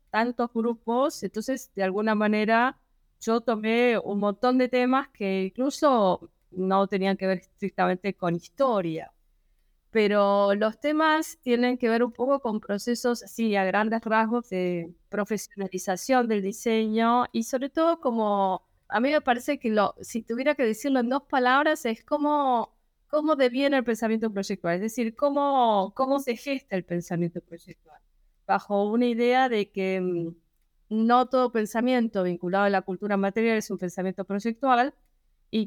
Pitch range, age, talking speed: 195-250 Hz, 20-39, 150 wpm